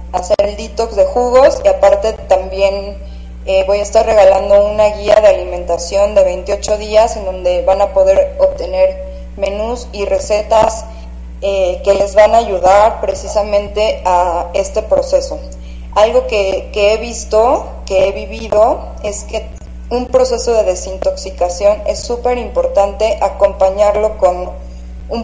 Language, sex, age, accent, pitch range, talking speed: Spanish, female, 20-39, Mexican, 185-230 Hz, 140 wpm